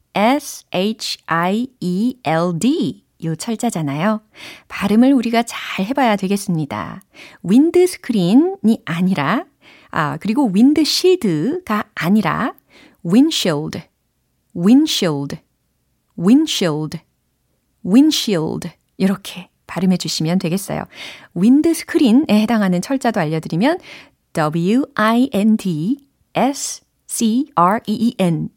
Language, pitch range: Korean, 175-255 Hz